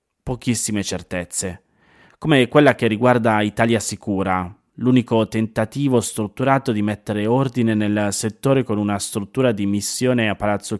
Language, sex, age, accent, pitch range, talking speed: Italian, male, 30-49, native, 100-125 Hz, 130 wpm